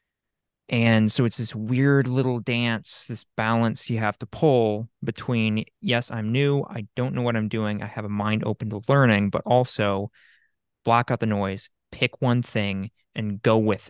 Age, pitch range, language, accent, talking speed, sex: 20-39, 105-125 Hz, English, American, 180 wpm, male